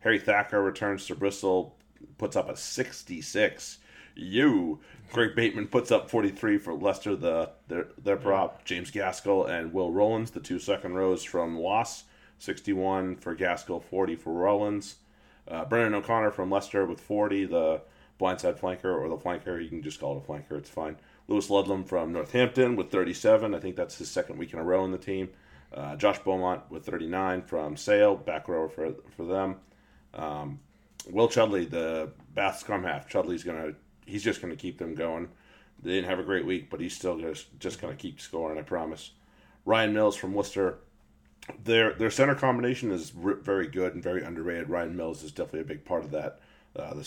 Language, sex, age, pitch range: English, male, 30-49, 80-100 Hz